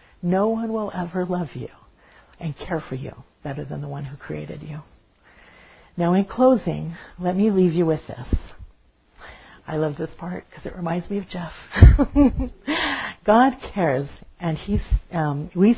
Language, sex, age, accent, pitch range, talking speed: English, female, 50-69, American, 155-195 Hz, 160 wpm